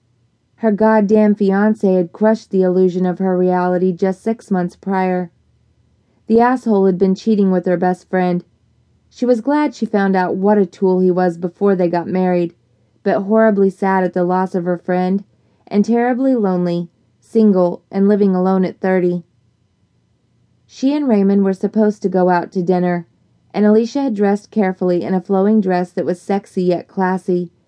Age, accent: 20-39, American